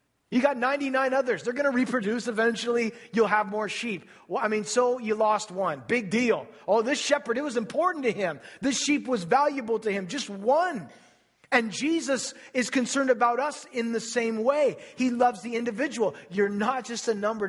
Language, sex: English, male